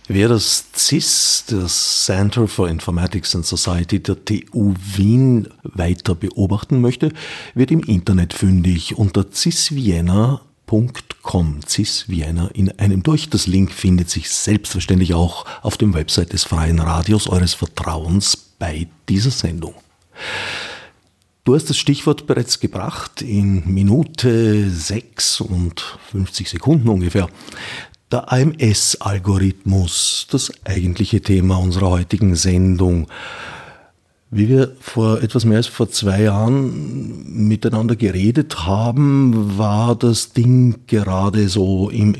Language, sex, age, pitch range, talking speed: German, male, 50-69, 95-115 Hz, 115 wpm